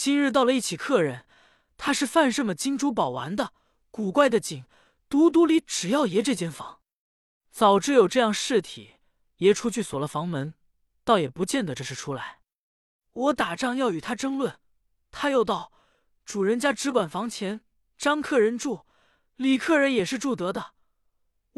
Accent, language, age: native, Chinese, 20-39